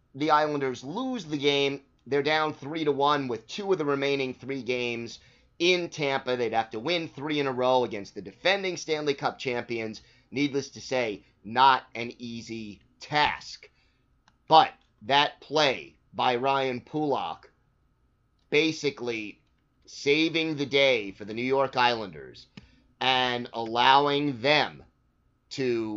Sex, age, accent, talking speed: male, 30-49, American, 135 wpm